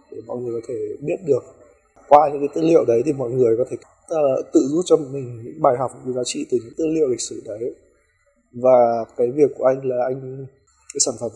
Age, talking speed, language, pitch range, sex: 20-39, 240 wpm, Vietnamese, 120-165 Hz, male